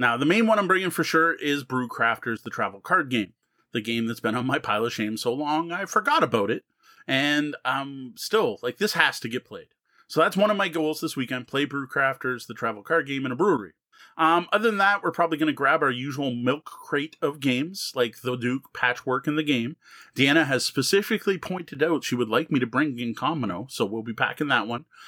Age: 30-49